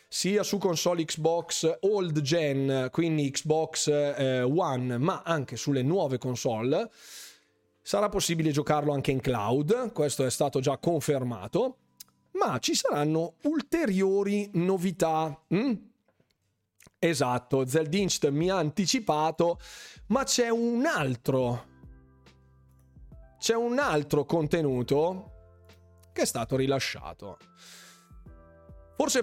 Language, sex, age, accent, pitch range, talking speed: Italian, male, 30-49, native, 135-180 Hz, 100 wpm